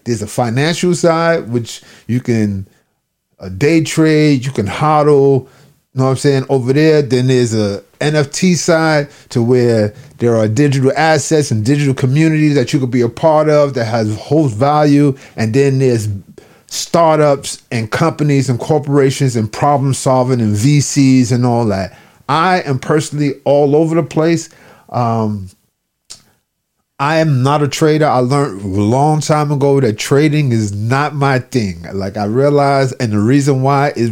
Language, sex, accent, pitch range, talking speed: English, male, American, 125-150 Hz, 165 wpm